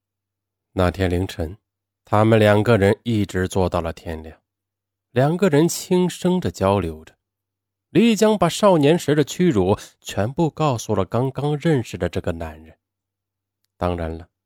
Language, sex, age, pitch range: Chinese, male, 20-39, 95-140 Hz